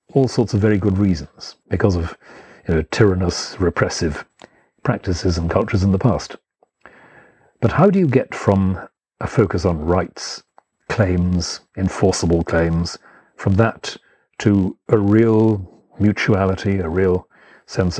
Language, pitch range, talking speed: English, 90-110 Hz, 125 wpm